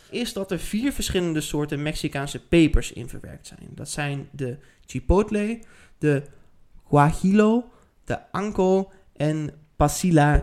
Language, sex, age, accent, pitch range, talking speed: Dutch, male, 20-39, Dutch, 145-185 Hz, 120 wpm